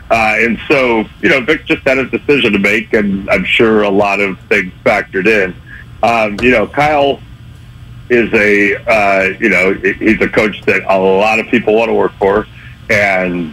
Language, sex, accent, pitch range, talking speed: English, male, American, 95-120 Hz, 190 wpm